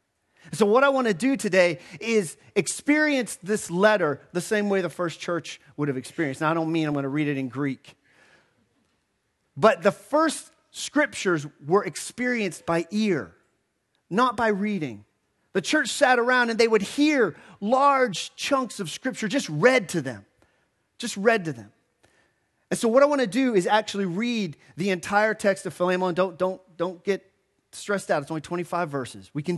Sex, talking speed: male, 180 wpm